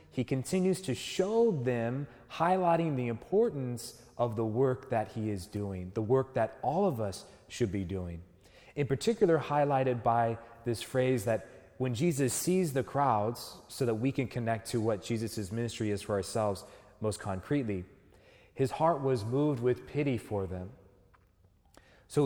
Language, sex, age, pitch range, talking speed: English, male, 30-49, 105-135 Hz, 160 wpm